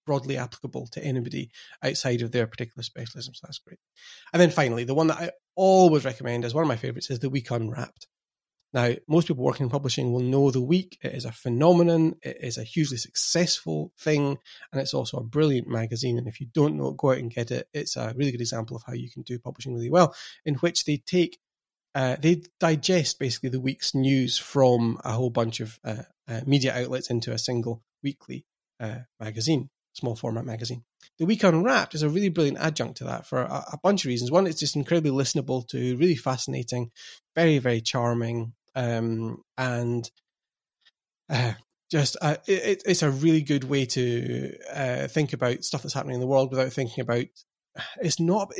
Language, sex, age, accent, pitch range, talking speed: English, male, 30-49, British, 120-160 Hz, 200 wpm